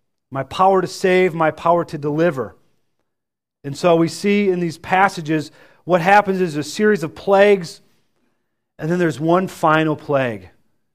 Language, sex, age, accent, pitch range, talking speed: English, male, 40-59, American, 150-190 Hz, 155 wpm